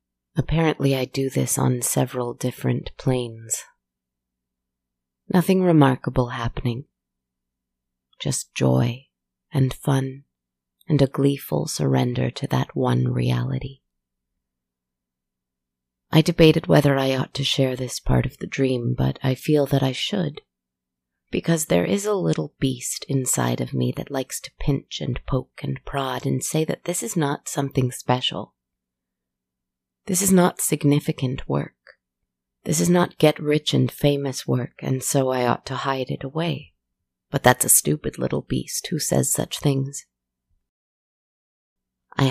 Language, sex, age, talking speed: English, female, 30-49, 135 wpm